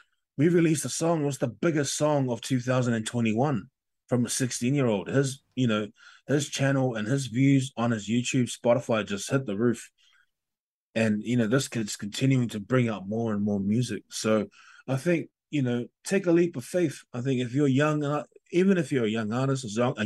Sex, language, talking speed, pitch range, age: male, English, 190 wpm, 105-130 Hz, 20-39